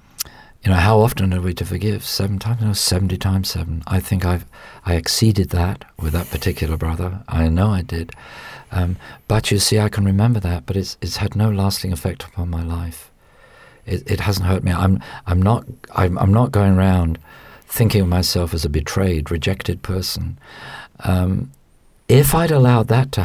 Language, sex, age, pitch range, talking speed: English, male, 50-69, 90-105 Hz, 190 wpm